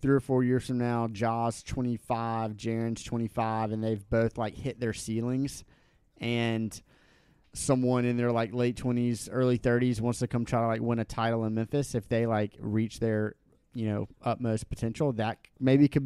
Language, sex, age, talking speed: English, male, 30-49, 185 wpm